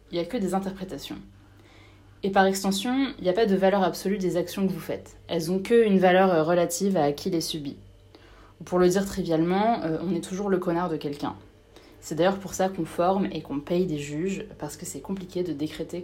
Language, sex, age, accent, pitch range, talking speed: French, female, 20-39, French, 150-190 Hz, 215 wpm